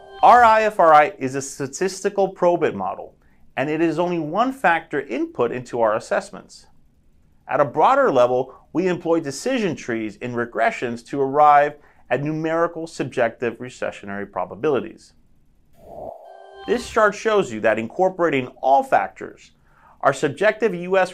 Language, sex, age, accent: English, male, 30-49, American